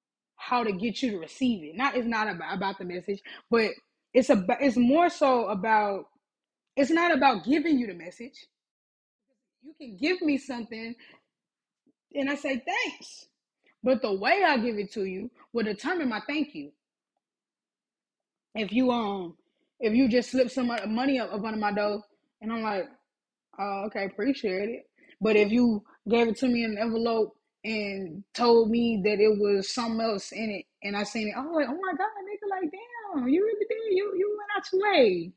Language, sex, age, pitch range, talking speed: English, female, 20-39, 205-270 Hz, 185 wpm